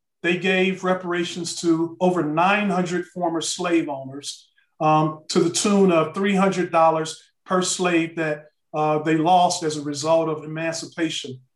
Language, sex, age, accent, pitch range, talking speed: English, male, 40-59, American, 160-190 Hz, 135 wpm